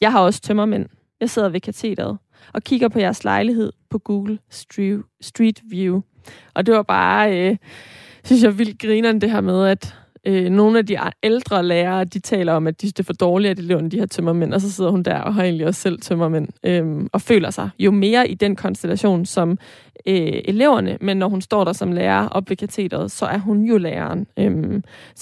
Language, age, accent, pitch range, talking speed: Danish, 20-39, native, 185-220 Hz, 215 wpm